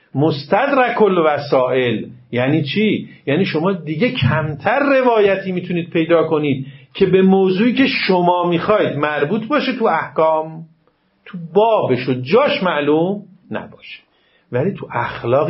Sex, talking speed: male, 120 wpm